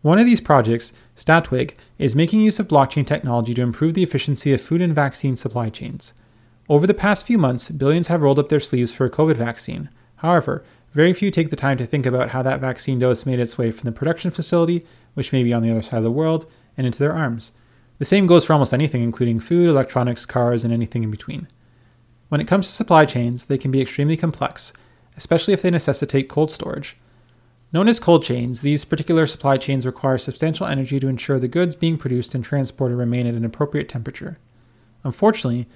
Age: 30-49